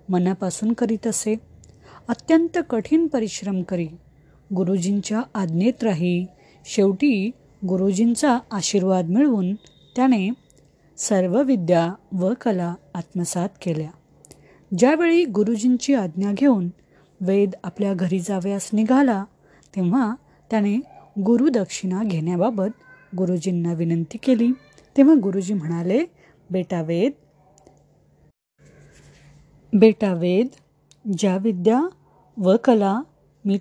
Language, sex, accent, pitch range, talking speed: Marathi, female, native, 180-250 Hz, 85 wpm